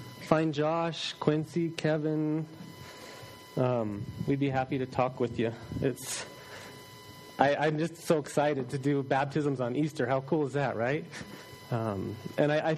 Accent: American